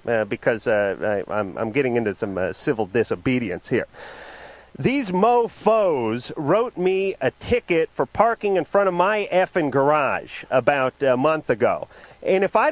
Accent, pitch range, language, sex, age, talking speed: American, 175-225 Hz, English, male, 40-59, 160 wpm